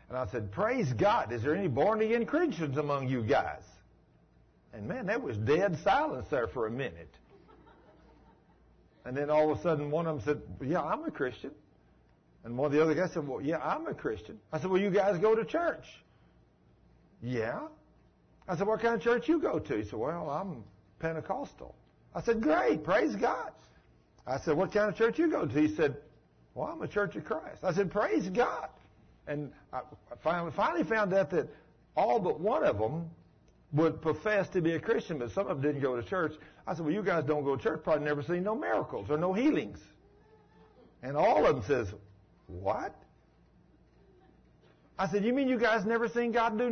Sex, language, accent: male, English, American